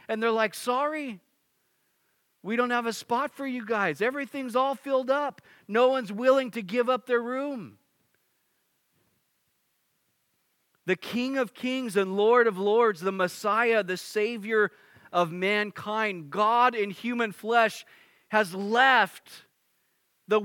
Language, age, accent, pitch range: English, 40-59, American, 185-250 Hz